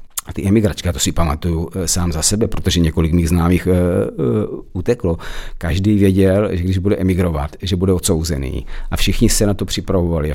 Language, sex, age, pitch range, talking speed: Czech, male, 50-69, 85-100 Hz, 185 wpm